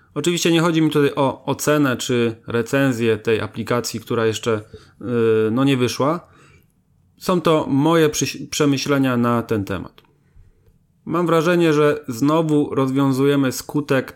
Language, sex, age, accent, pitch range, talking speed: Polish, male, 30-49, native, 120-150 Hz, 125 wpm